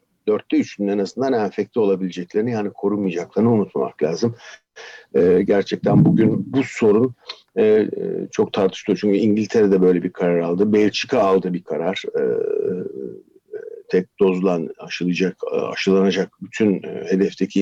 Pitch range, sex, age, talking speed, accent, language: 95-135 Hz, male, 60-79, 125 wpm, native, Turkish